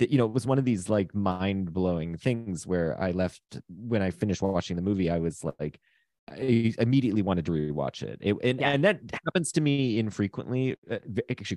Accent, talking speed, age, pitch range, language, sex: American, 200 wpm, 30-49, 90-120 Hz, English, male